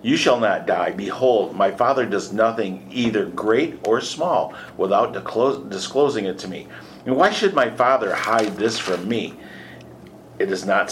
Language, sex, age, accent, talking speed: English, male, 50-69, American, 170 wpm